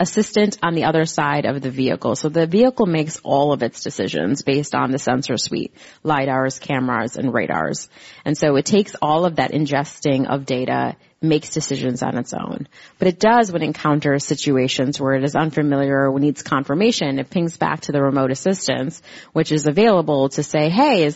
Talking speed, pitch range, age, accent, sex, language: 195 wpm, 140-180 Hz, 30-49, American, female, English